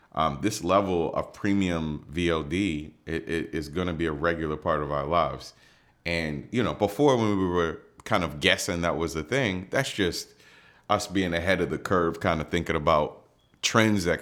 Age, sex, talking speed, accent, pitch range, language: 30-49, male, 185 wpm, American, 75-95 Hz, English